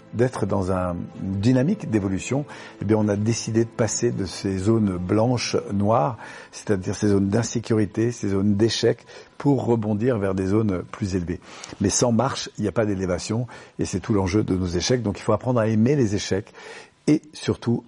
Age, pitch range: 50-69, 95-115 Hz